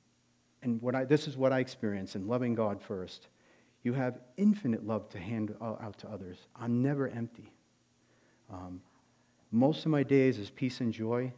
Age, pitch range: 40-59, 105-135 Hz